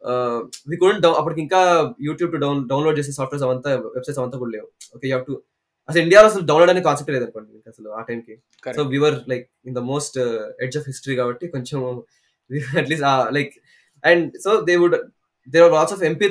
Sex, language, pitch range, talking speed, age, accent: male, Telugu, 125-160 Hz, 100 wpm, 20-39, native